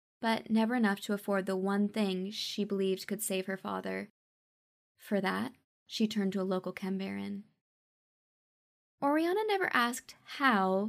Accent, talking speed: American, 145 wpm